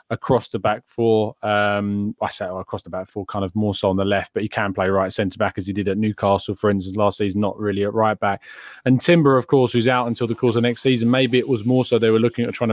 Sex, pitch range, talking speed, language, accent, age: male, 110-125 Hz, 285 wpm, English, British, 20-39